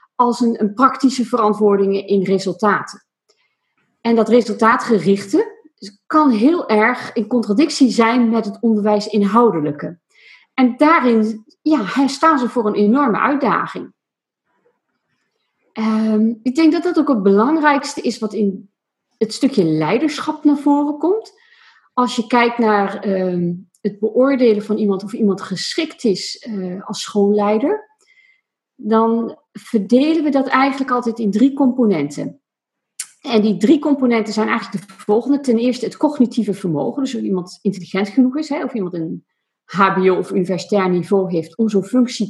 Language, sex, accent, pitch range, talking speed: Dutch, female, Dutch, 205-265 Hz, 140 wpm